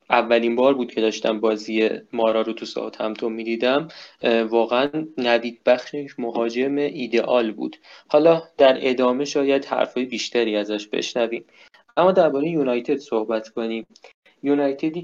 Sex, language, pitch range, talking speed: male, Persian, 115-140 Hz, 130 wpm